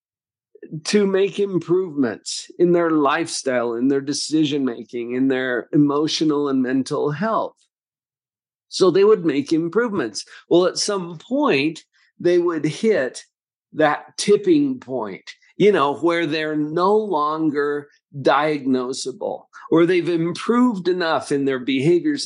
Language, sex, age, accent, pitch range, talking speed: English, male, 50-69, American, 145-215 Hz, 120 wpm